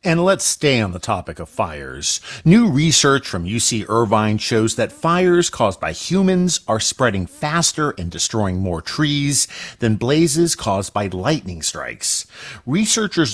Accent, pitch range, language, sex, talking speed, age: American, 100-145 Hz, English, male, 150 wpm, 50-69